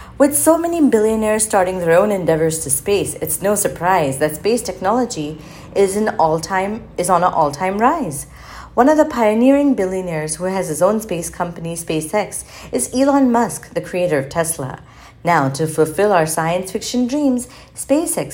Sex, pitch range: female, 160-220 Hz